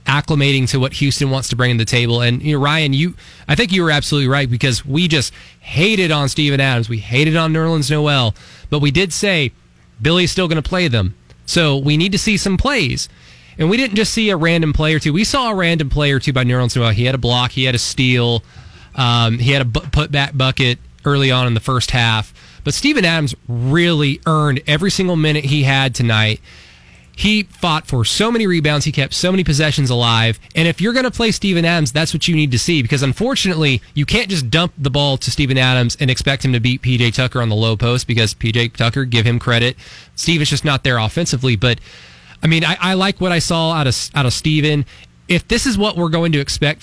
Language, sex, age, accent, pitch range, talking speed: English, male, 20-39, American, 120-160 Hz, 235 wpm